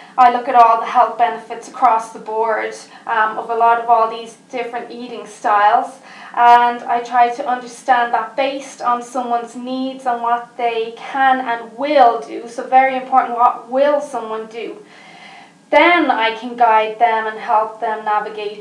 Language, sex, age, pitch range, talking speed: English, female, 30-49, 220-250 Hz, 170 wpm